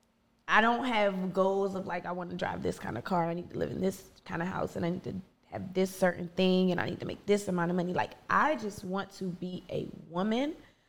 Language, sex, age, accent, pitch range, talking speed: English, female, 20-39, American, 185-210 Hz, 265 wpm